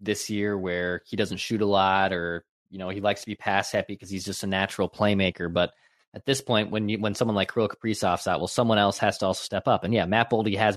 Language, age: English, 20-39